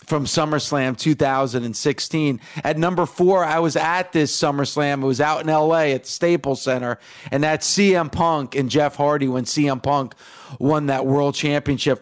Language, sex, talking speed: English, male, 170 wpm